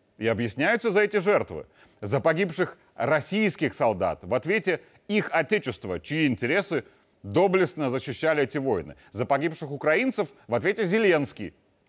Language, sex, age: Russian, male, 30-49